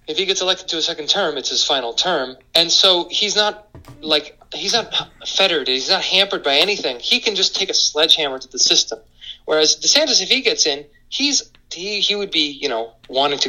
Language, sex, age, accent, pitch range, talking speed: English, male, 30-49, American, 130-200 Hz, 220 wpm